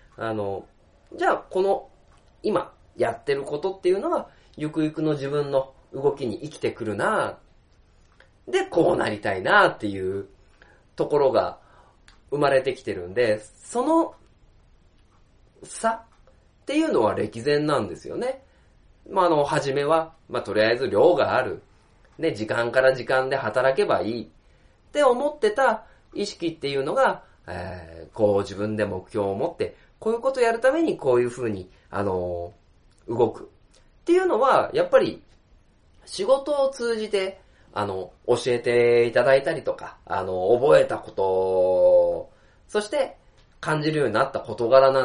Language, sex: Japanese, male